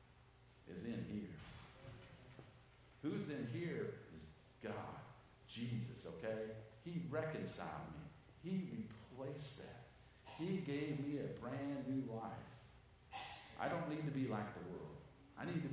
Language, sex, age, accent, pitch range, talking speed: English, male, 50-69, American, 125-200 Hz, 130 wpm